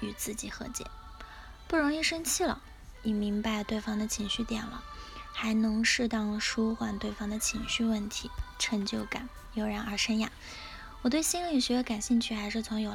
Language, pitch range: Chinese, 220-260 Hz